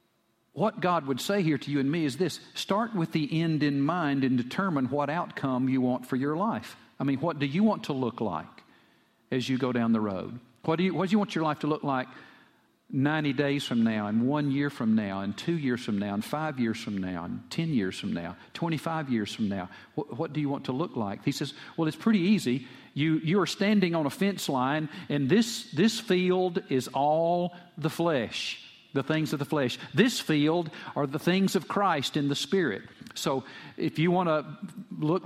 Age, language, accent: 50-69, English, American